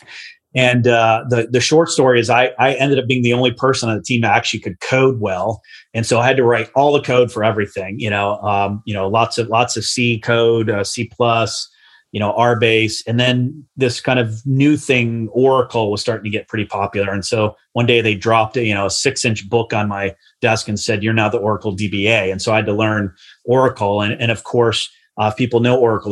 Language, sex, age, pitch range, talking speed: English, male, 30-49, 105-120 Hz, 235 wpm